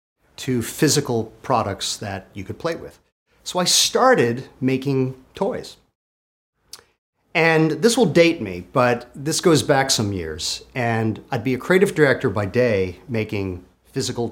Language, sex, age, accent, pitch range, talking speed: English, male, 40-59, American, 105-155 Hz, 145 wpm